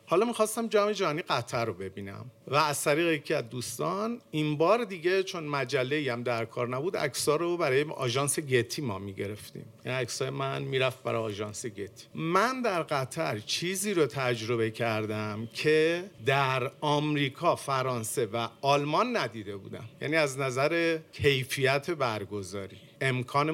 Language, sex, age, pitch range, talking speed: Persian, male, 50-69, 115-155 Hz, 145 wpm